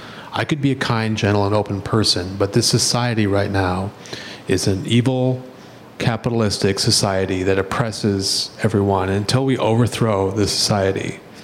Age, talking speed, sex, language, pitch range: 40-59, 145 wpm, male, English, 95-125 Hz